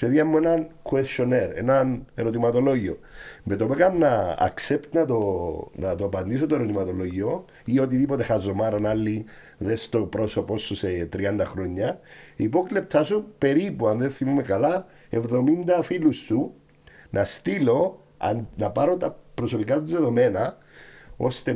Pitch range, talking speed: 105-155 Hz, 130 wpm